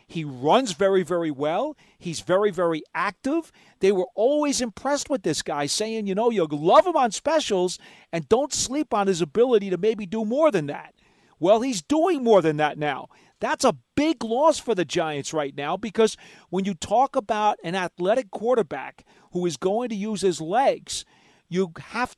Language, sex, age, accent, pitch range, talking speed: English, male, 40-59, American, 165-240 Hz, 185 wpm